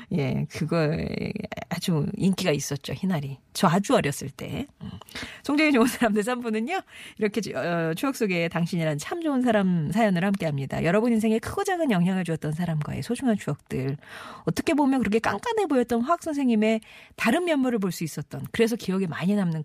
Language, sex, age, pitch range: Korean, female, 40-59, 160-230 Hz